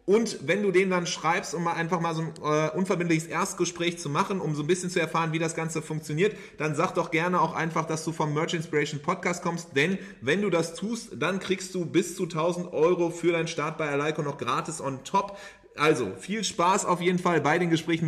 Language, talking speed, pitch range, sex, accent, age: English, 230 wpm, 140-170 Hz, male, German, 30-49